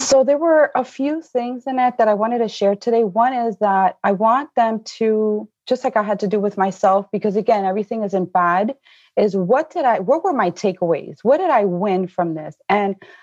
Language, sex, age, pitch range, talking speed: English, female, 30-49, 185-225 Hz, 220 wpm